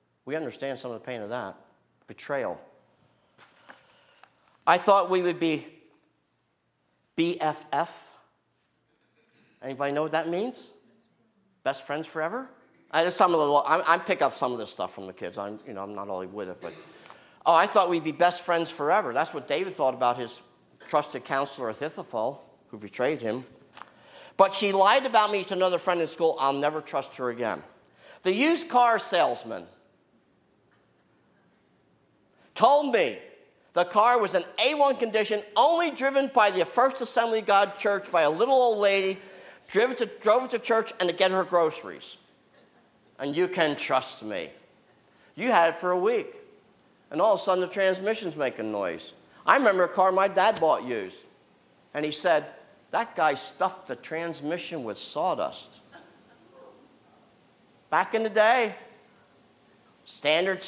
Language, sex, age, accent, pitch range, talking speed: English, male, 50-69, American, 150-215 Hz, 160 wpm